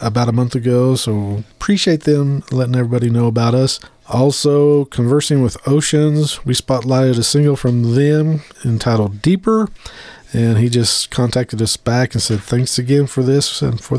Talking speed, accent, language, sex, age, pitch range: 165 wpm, American, English, male, 40-59, 115-145 Hz